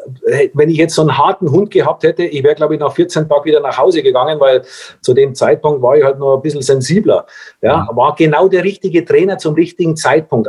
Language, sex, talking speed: German, male, 230 wpm